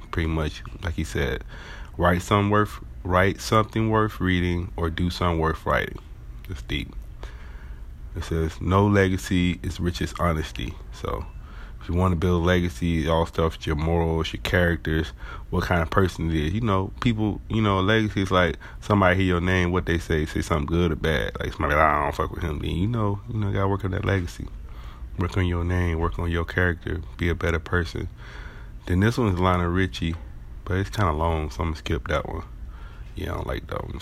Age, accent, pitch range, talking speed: 30-49, American, 80-95 Hz, 210 wpm